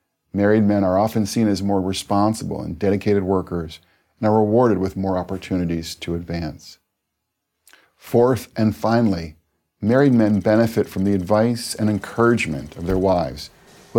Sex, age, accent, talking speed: male, 50-69, American, 145 wpm